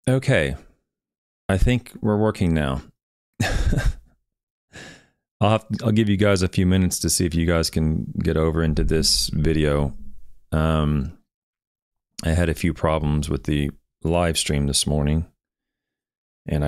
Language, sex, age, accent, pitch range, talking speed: English, male, 40-59, American, 70-85 Hz, 140 wpm